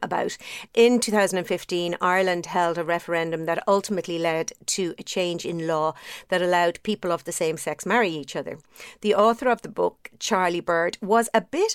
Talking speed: 180 wpm